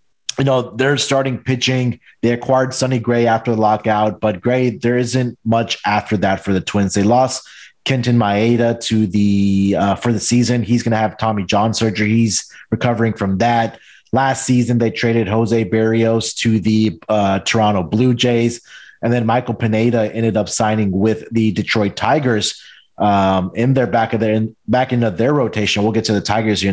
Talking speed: 185 wpm